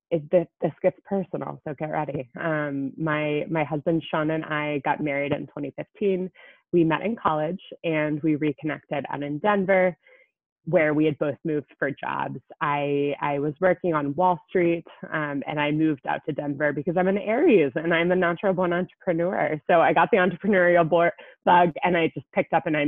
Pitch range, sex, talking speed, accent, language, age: 150-180 Hz, female, 195 wpm, American, English, 20-39